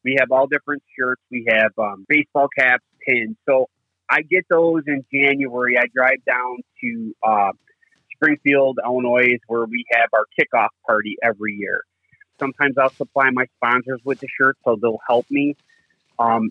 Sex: male